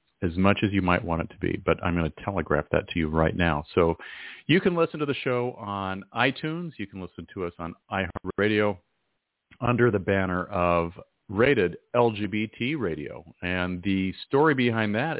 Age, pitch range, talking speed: 40-59, 90-110 Hz, 185 wpm